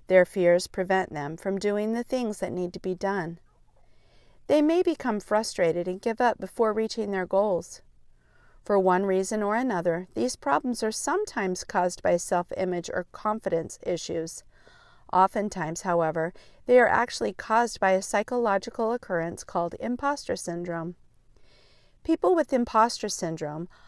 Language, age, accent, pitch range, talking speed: English, 40-59, American, 175-225 Hz, 140 wpm